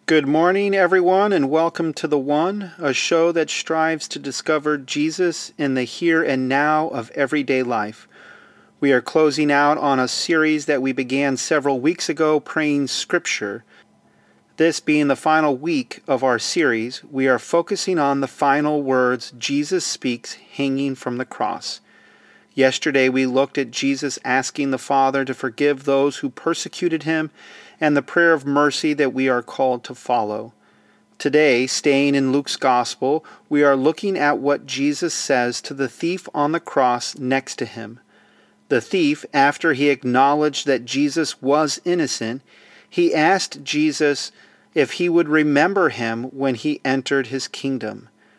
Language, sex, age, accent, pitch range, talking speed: English, male, 40-59, American, 135-160 Hz, 155 wpm